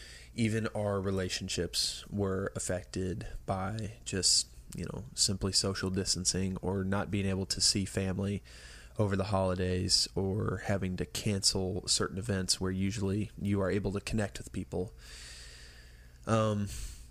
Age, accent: 20-39, American